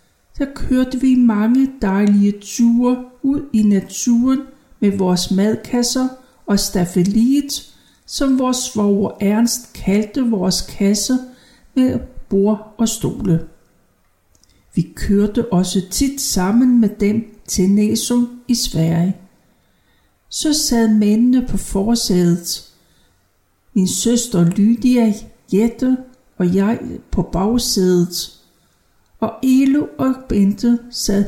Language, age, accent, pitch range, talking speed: Danish, 60-79, native, 195-250 Hz, 105 wpm